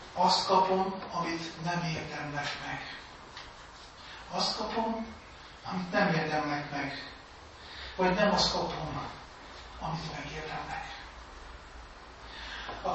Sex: male